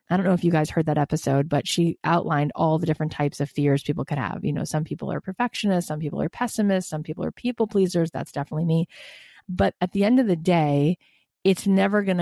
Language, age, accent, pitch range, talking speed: English, 30-49, American, 150-175 Hz, 240 wpm